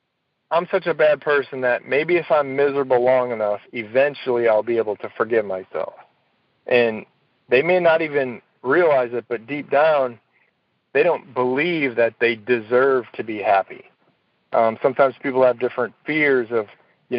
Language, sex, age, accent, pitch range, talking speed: English, male, 40-59, American, 120-140 Hz, 160 wpm